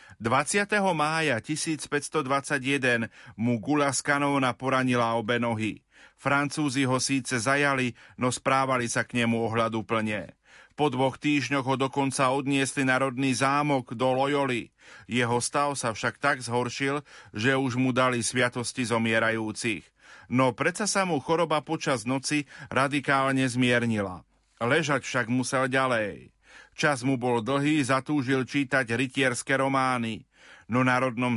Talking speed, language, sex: 130 wpm, Slovak, male